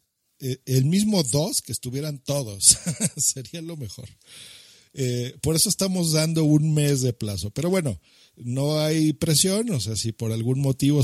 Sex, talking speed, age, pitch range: male, 165 wpm, 50-69, 115-145 Hz